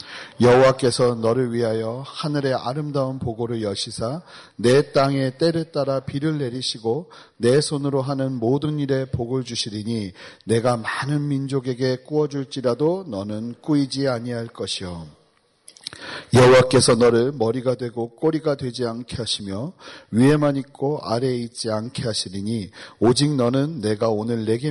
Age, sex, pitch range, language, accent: 40-59, male, 115-145 Hz, Korean, native